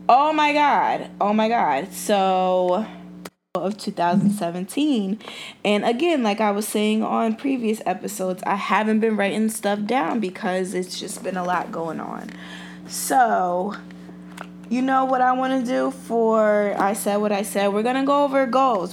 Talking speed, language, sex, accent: 165 wpm, English, female, American